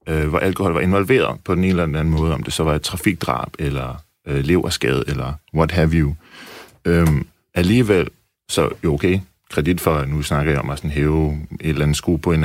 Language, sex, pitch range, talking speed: Danish, male, 80-100 Hz, 215 wpm